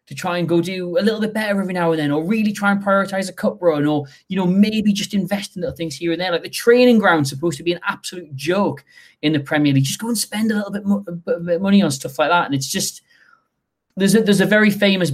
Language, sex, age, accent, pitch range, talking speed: English, male, 20-39, British, 130-175 Hz, 280 wpm